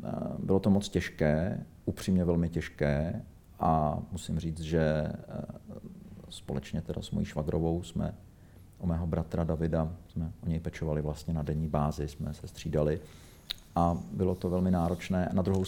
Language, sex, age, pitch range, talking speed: Czech, male, 50-69, 80-95 Hz, 150 wpm